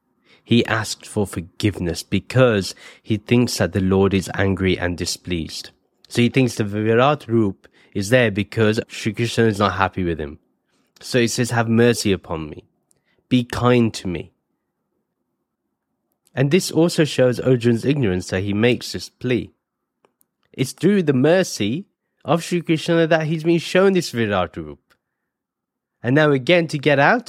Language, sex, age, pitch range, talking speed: English, male, 30-49, 105-145 Hz, 160 wpm